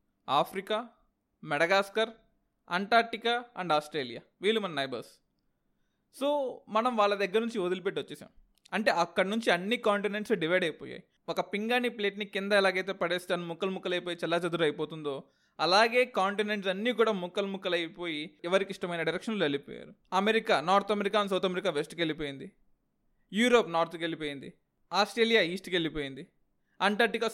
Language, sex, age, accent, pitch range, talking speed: Telugu, male, 20-39, native, 180-225 Hz, 135 wpm